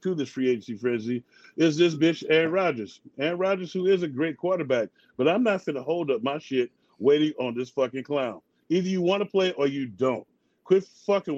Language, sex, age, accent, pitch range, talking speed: English, male, 40-59, American, 140-195 Hz, 215 wpm